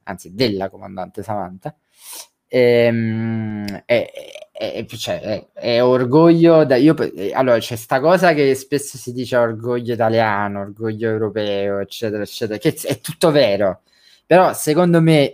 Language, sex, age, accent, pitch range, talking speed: Italian, male, 20-39, native, 110-140 Hz, 140 wpm